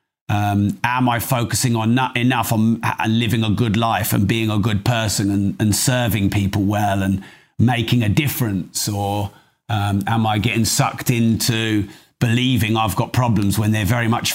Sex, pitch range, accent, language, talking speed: male, 105-120 Hz, British, English, 170 wpm